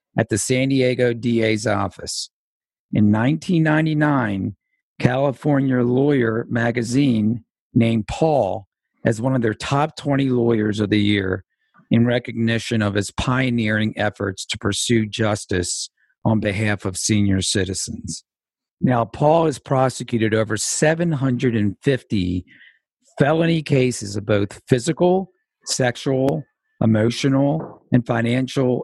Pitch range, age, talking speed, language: 110-135 Hz, 50-69, 110 wpm, English